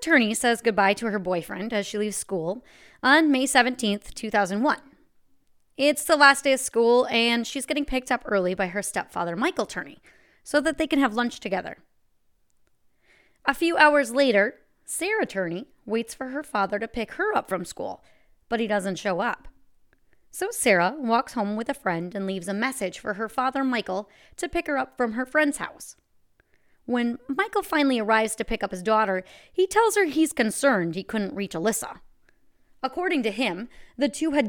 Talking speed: 185 wpm